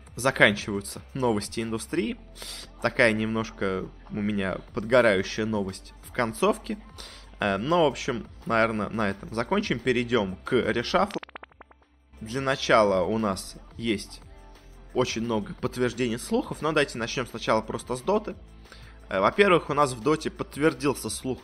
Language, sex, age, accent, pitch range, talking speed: Russian, male, 20-39, native, 105-135 Hz, 125 wpm